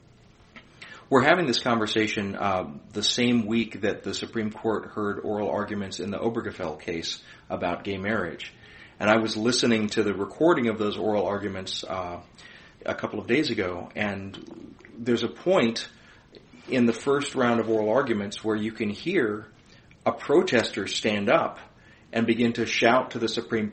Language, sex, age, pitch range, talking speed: English, male, 30-49, 105-120 Hz, 165 wpm